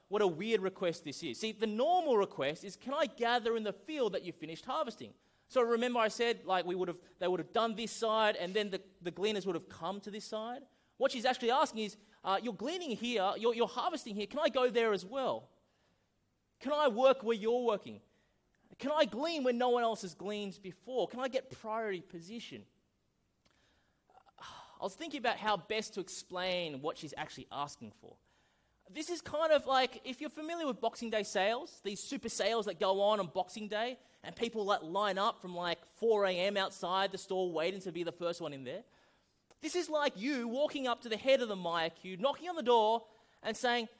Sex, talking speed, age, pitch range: male, 215 wpm, 20-39, 200-265 Hz